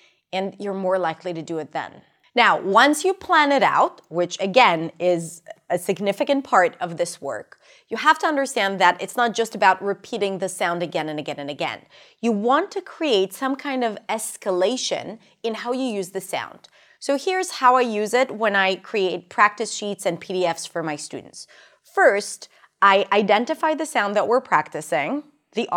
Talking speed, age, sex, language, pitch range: 185 wpm, 30-49, female, English, 185-255 Hz